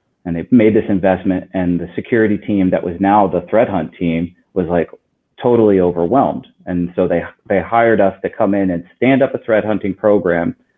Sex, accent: male, American